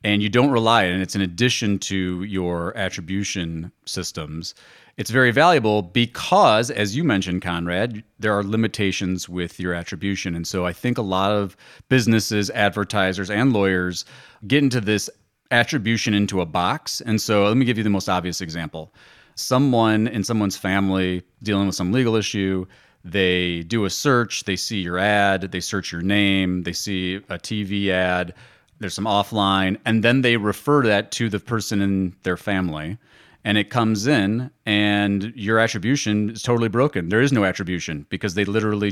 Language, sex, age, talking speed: English, male, 30-49, 175 wpm